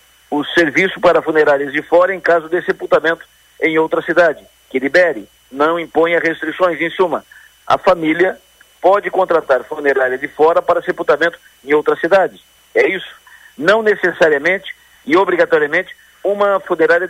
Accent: Brazilian